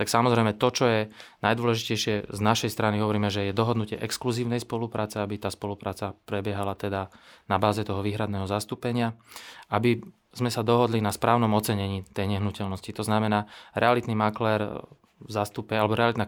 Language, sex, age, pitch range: Slovak, male, 20-39, 100-115 Hz